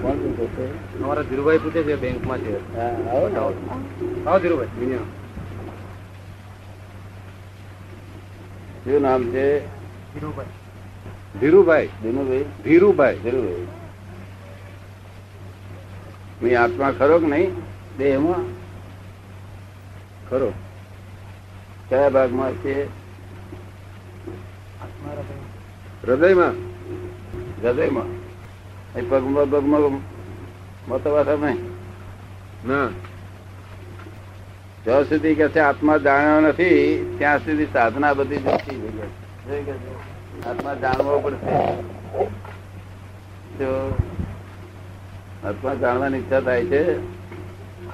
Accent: native